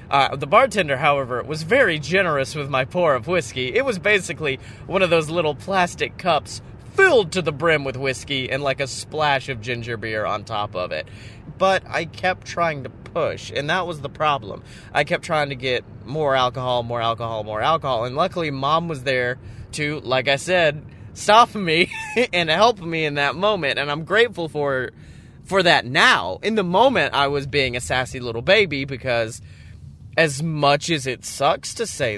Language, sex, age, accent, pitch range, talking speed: English, male, 30-49, American, 120-165 Hz, 190 wpm